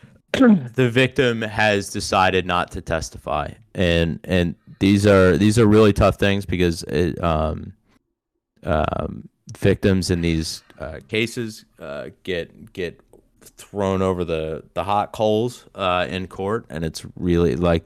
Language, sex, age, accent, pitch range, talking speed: English, male, 30-49, American, 85-110 Hz, 140 wpm